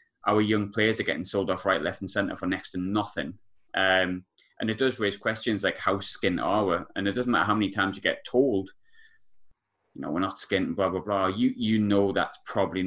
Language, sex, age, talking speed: English, male, 20-39, 230 wpm